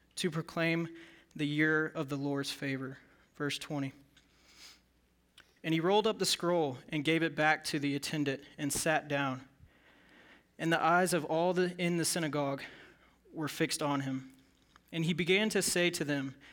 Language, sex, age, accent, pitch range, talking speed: English, male, 20-39, American, 145-175 Hz, 165 wpm